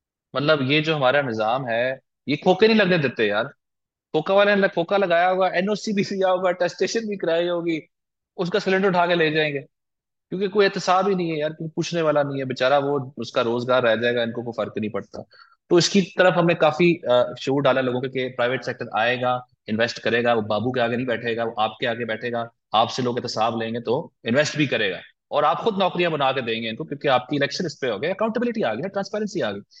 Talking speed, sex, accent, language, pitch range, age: 140 wpm, male, Indian, English, 125-175 Hz, 20-39